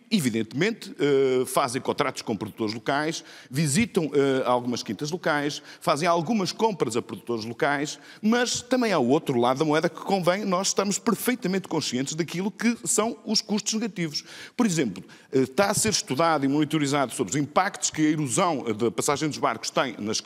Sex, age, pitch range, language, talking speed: male, 50-69, 130-190 Hz, Portuguese, 165 wpm